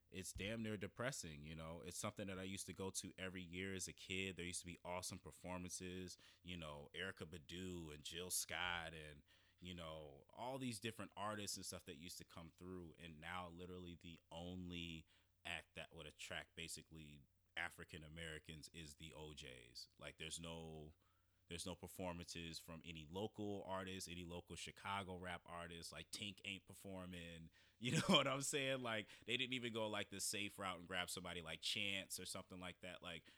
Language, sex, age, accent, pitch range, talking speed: English, male, 30-49, American, 85-95 Hz, 185 wpm